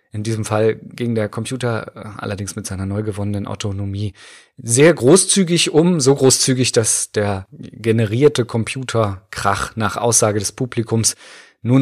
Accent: German